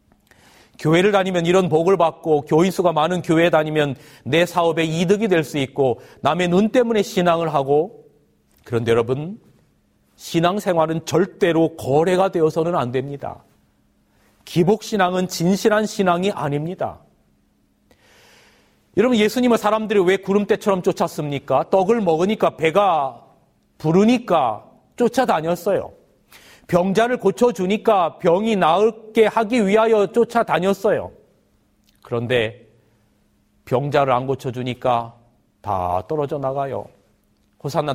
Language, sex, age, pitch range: Korean, male, 40-59, 150-205 Hz